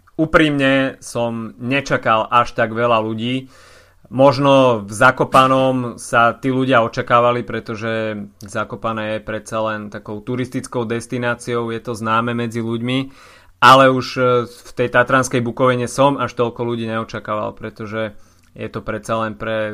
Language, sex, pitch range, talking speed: Slovak, male, 115-130 Hz, 135 wpm